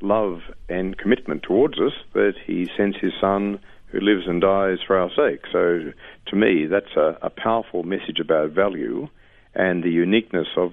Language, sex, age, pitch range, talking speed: English, male, 50-69, 95-110 Hz, 175 wpm